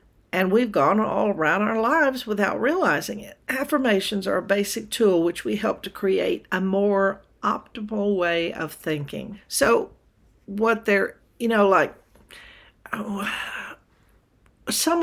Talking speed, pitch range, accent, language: 135 wpm, 165-205 Hz, American, English